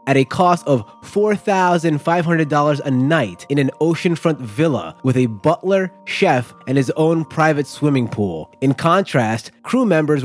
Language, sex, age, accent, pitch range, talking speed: English, male, 20-39, American, 125-170 Hz, 145 wpm